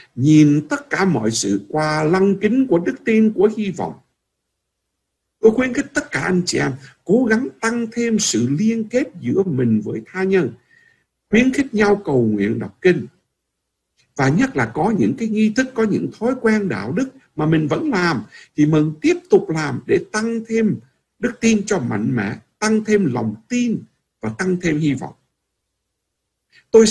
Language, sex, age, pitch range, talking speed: Vietnamese, male, 60-79, 155-225 Hz, 185 wpm